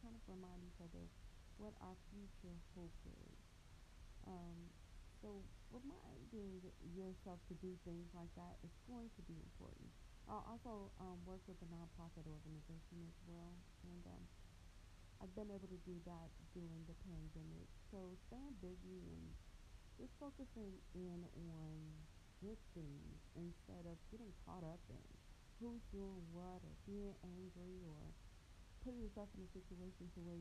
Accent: American